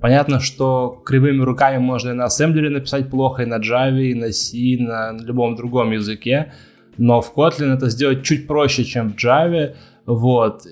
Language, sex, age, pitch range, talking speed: Russian, male, 20-39, 115-135 Hz, 180 wpm